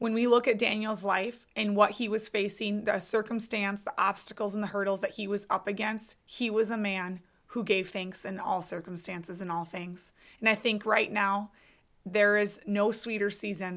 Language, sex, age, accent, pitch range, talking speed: English, female, 20-39, American, 195-215 Hz, 200 wpm